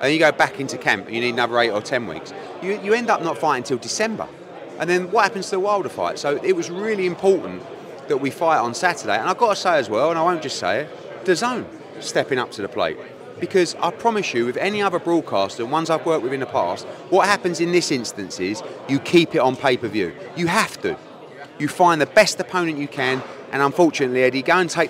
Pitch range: 130-190 Hz